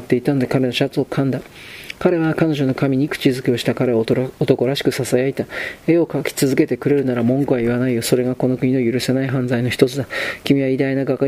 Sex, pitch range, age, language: male, 130-145 Hz, 40-59, Japanese